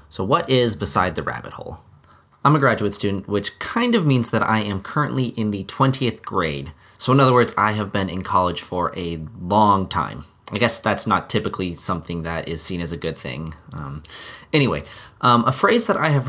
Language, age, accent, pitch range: English, 20-39, American, 95-130 Hz